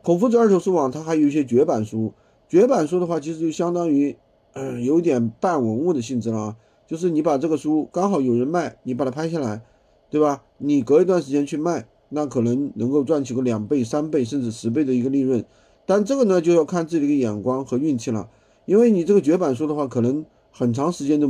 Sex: male